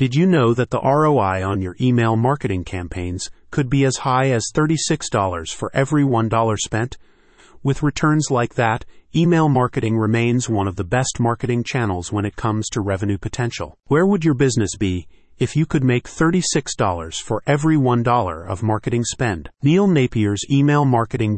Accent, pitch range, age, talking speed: American, 105-135 Hz, 30-49, 170 wpm